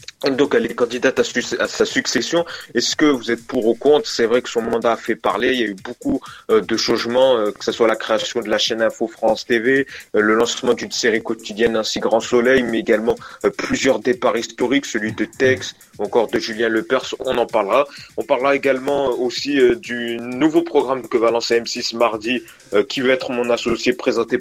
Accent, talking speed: French, 220 wpm